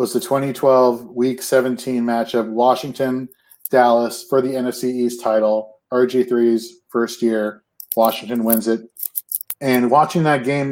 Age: 40-59